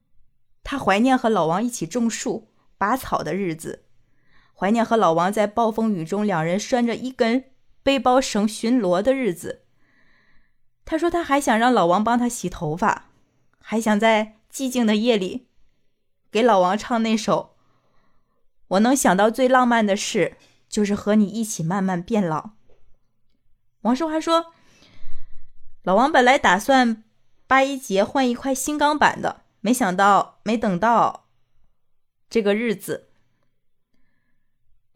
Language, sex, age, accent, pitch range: Chinese, female, 20-39, native, 180-255 Hz